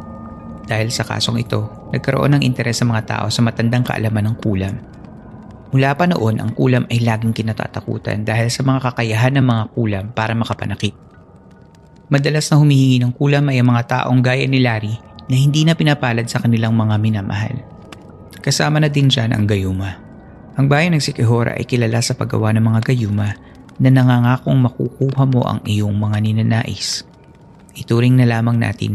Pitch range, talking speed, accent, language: 110-125 Hz, 165 wpm, native, Filipino